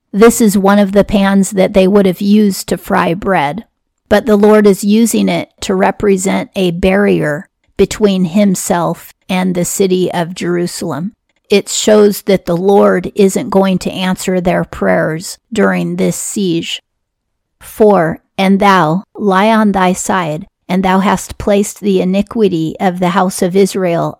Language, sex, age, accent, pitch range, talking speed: English, female, 40-59, American, 175-205 Hz, 155 wpm